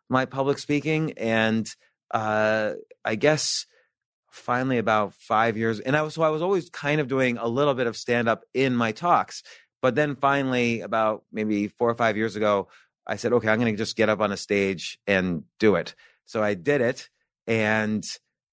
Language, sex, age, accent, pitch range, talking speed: English, male, 30-49, American, 110-125 Hz, 195 wpm